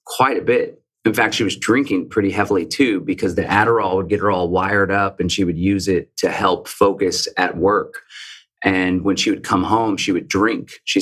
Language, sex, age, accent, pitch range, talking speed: English, male, 30-49, American, 95-130 Hz, 220 wpm